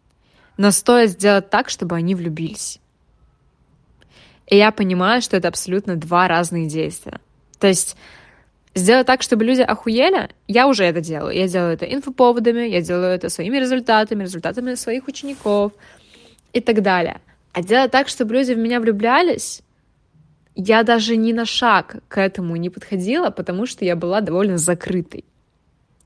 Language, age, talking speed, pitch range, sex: Russian, 20-39, 150 wpm, 190-245 Hz, female